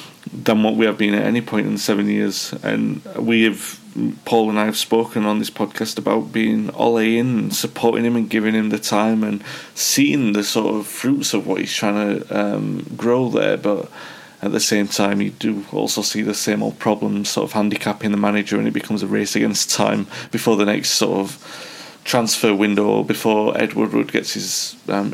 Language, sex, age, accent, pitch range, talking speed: English, male, 30-49, British, 105-120 Hz, 205 wpm